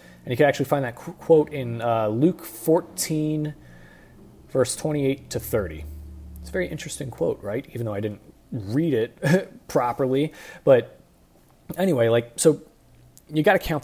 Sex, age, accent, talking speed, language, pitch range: male, 30-49, American, 155 wpm, English, 115-150 Hz